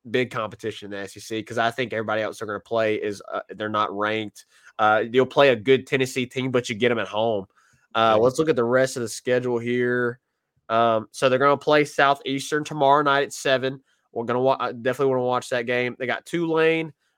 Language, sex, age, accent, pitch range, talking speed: English, male, 20-39, American, 120-145 Hz, 230 wpm